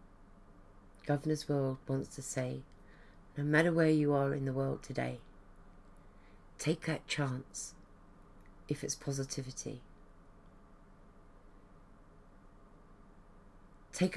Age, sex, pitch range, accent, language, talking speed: 40-59, female, 95-150 Hz, British, English, 90 wpm